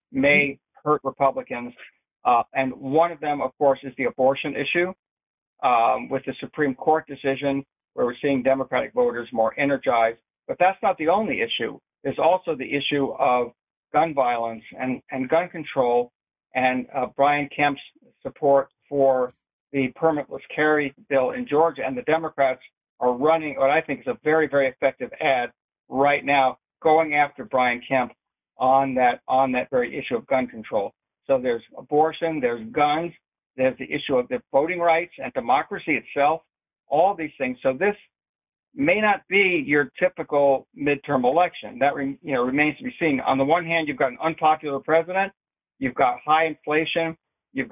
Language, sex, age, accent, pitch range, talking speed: English, male, 60-79, American, 135-160 Hz, 170 wpm